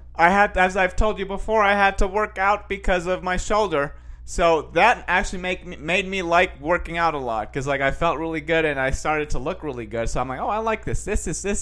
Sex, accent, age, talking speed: male, American, 30-49, 270 wpm